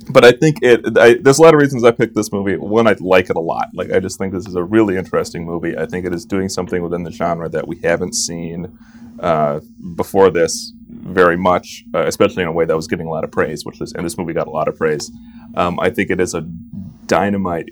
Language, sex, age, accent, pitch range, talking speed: English, male, 30-49, American, 90-130 Hz, 260 wpm